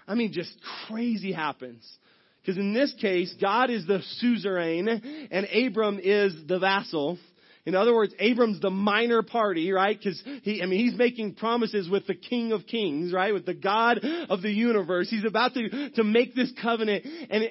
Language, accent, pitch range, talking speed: English, American, 200-245 Hz, 180 wpm